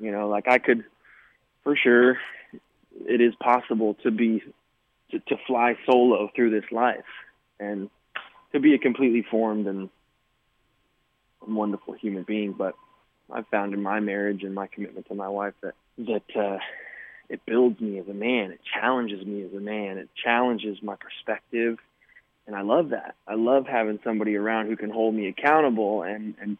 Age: 20-39